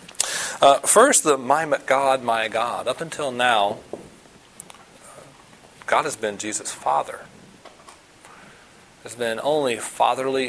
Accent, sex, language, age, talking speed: American, male, English, 40-59, 110 wpm